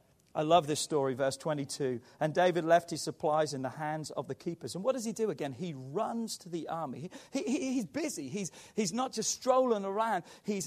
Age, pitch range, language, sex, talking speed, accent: 40-59, 145-205 Hz, English, male, 210 wpm, British